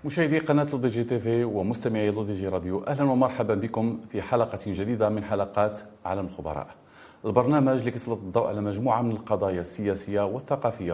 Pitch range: 100-135 Hz